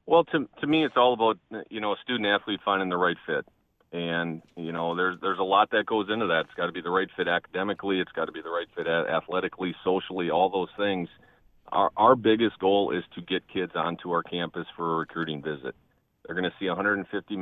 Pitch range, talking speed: 85-100 Hz, 230 wpm